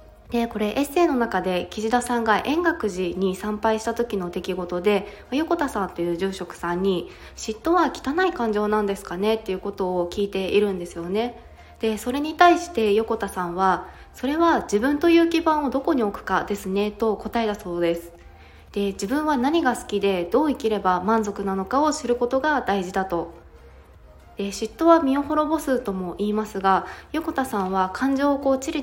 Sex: female